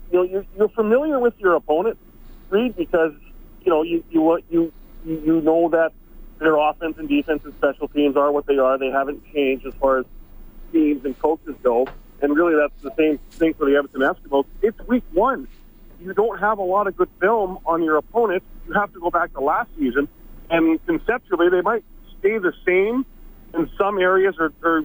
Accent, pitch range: American, 145-185 Hz